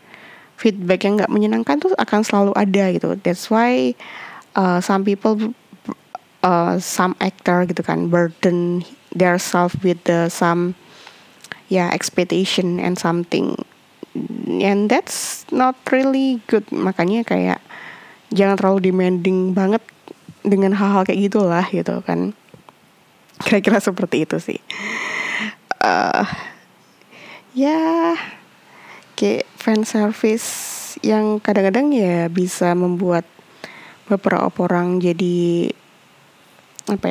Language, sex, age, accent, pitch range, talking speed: Indonesian, female, 20-39, native, 175-220 Hz, 105 wpm